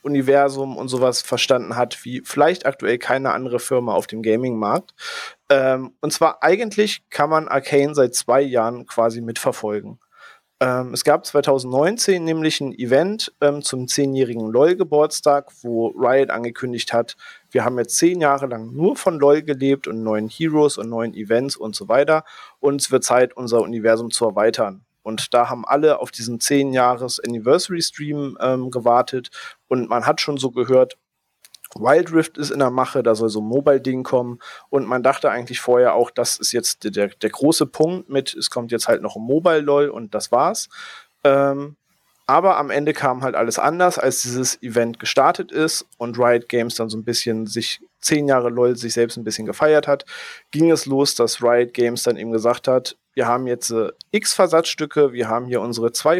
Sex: male